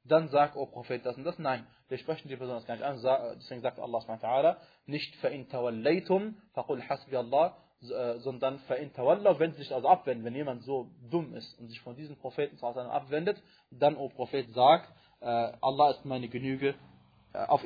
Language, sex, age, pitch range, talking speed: German, male, 20-39, 120-145 Hz, 175 wpm